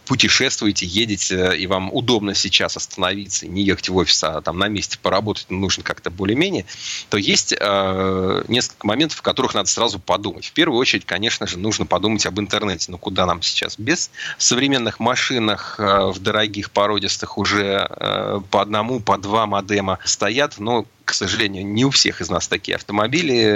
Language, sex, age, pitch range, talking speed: Russian, male, 30-49, 95-110 Hz, 165 wpm